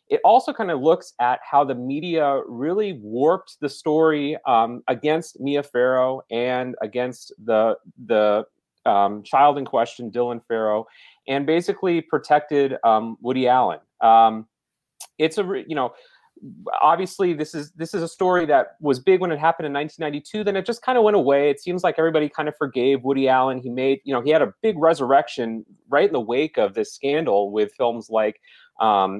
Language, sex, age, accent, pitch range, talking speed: English, male, 30-49, American, 115-155 Hz, 185 wpm